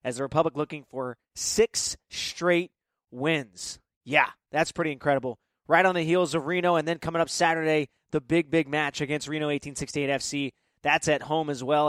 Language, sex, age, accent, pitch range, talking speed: English, male, 20-39, American, 145-175 Hz, 180 wpm